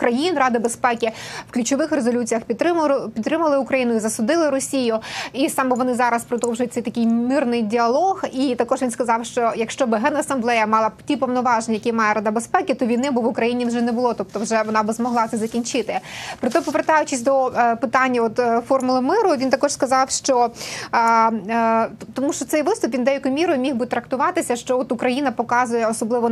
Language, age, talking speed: Ukrainian, 20-39, 180 wpm